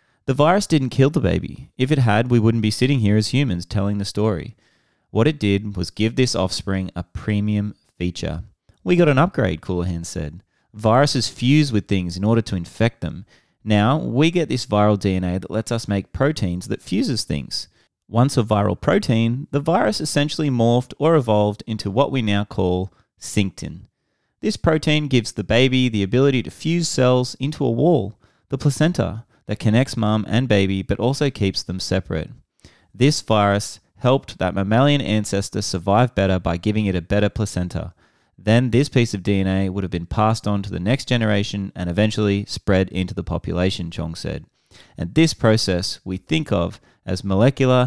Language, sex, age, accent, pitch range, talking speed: English, male, 30-49, Australian, 95-125 Hz, 180 wpm